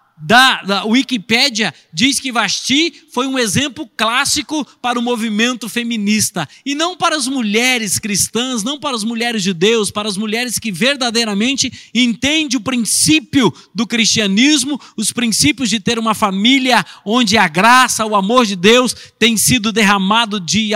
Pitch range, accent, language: 220-275 Hz, Brazilian, Portuguese